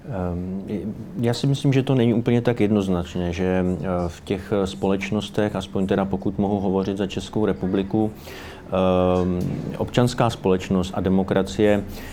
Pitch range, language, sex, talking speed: 95-110 Hz, Slovak, male, 125 wpm